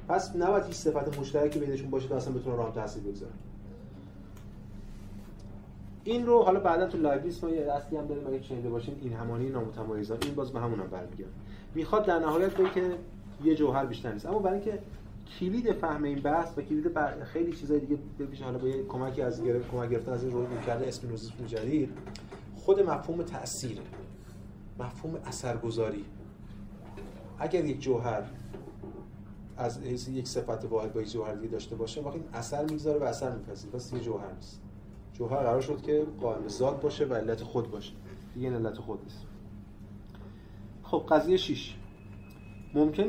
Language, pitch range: Persian, 105-150 Hz